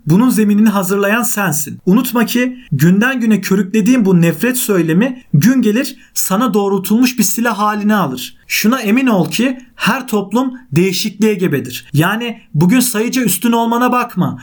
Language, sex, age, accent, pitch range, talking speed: Turkish, male, 40-59, native, 200-250 Hz, 140 wpm